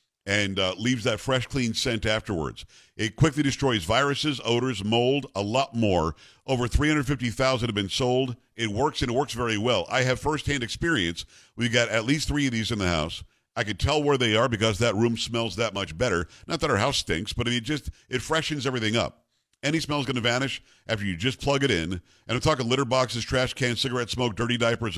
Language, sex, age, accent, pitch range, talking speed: English, male, 50-69, American, 110-135 Hz, 220 wpm